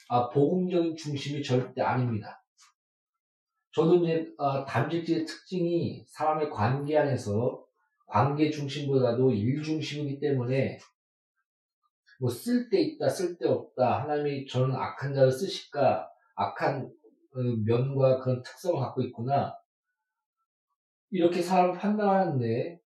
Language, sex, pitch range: Korean, male, 130-180 Hz